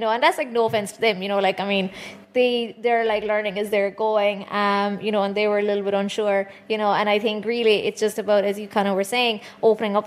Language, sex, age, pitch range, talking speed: English, female, 20-39, 200-235 Hz, 285 wpm